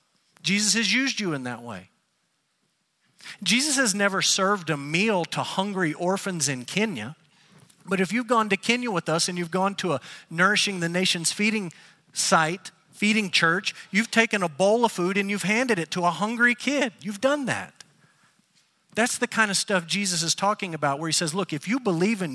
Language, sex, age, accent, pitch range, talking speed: English, male, 50-69, American, 155-205 Hz, 195 wpm